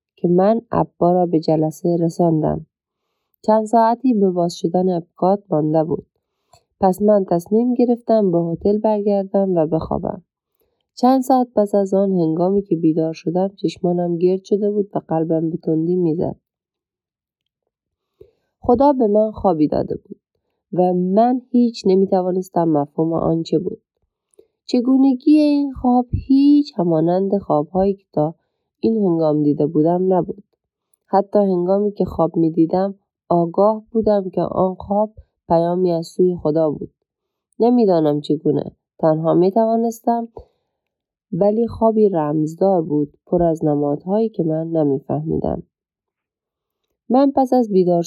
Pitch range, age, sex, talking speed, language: 165-215 Hz, 30-49, female, 125 wpm, Persian